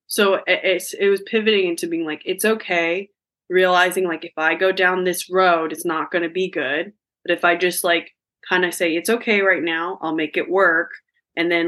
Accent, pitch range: American, 160-185 Hz